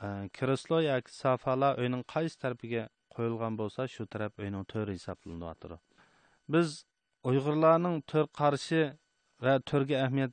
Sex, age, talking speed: male, 30-49, 140 wpm